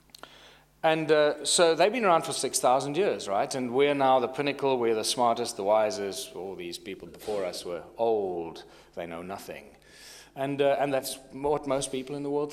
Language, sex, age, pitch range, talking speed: English, male, 40-59, 130-185 Hz, 190 wpm